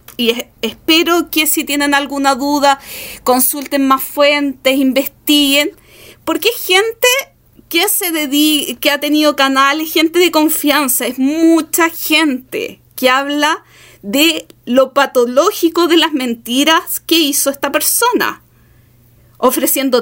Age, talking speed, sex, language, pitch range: 30-49, 115 wpm, female, Spanish, 255-320 Hz